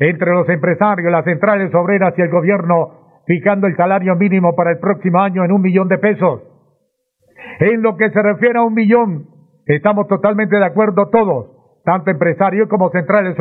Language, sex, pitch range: Spanish, male, 175-210 Hz